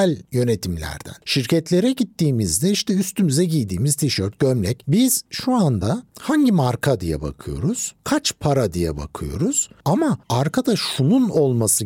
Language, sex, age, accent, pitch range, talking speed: Turkish, male, 60-79, native, 125-175 Hz, 115 wpm